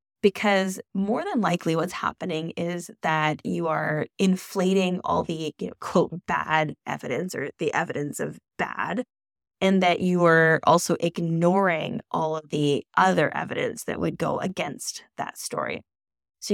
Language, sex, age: English, female, 10-29